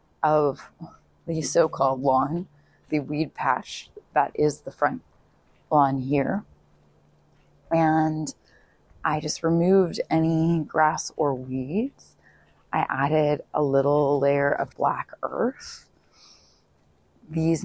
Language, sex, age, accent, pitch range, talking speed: English, female, 30-49, American, 145-185 Hz, 100 wpm